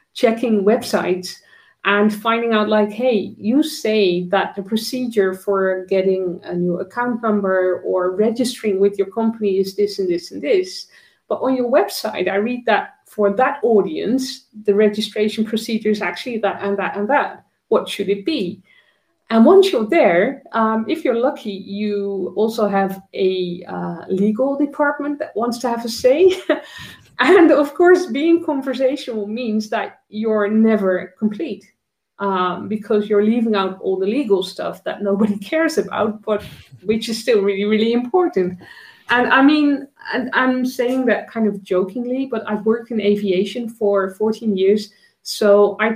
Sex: female